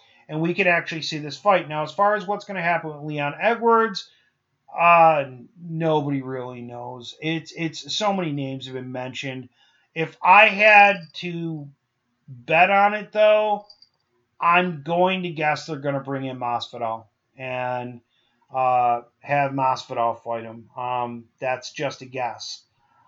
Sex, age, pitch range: male, 30-49, 135-170 Hz